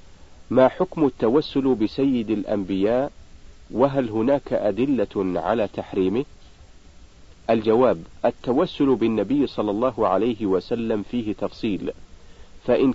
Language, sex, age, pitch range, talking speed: Arabic, male, 50-69, 95-125 Hz, 95 wpm